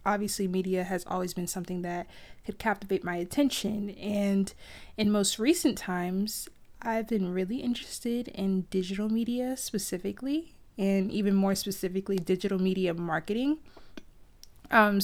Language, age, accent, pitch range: English, 20-39, American, 190-230 Hz